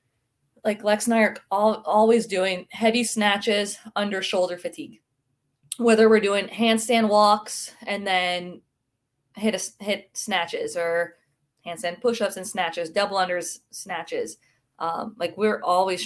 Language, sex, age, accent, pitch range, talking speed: English, female, 20-39, American, 180-220 Hz, 135 wpm